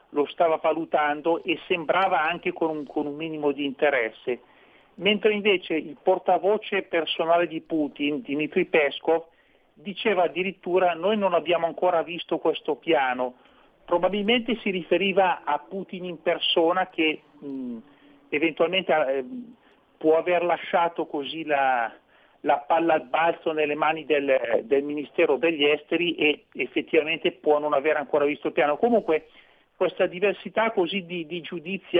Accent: native